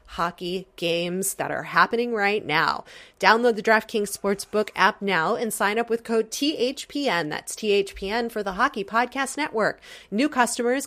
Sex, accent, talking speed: female, American, 155 wpm